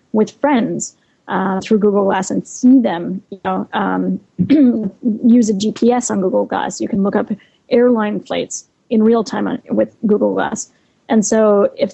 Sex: female